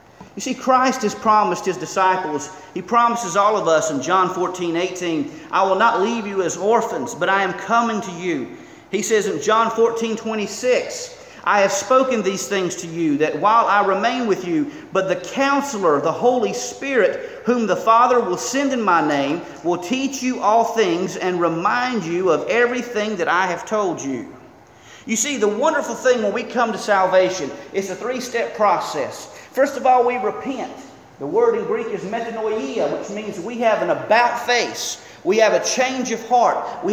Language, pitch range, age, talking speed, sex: English, 195-255 Hz, 40-59, 185 wpm, male